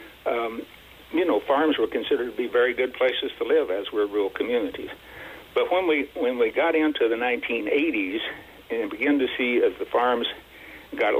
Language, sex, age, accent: English, male, 60-79, American